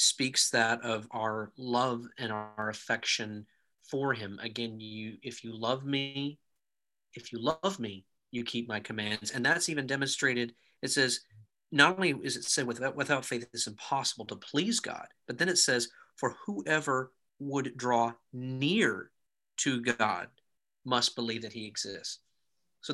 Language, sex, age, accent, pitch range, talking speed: English, male, 40-59, American, 115-135 Hz, 155 wpm